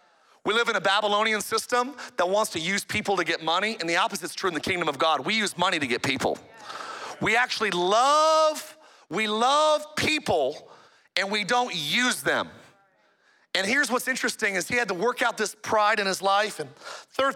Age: 40-59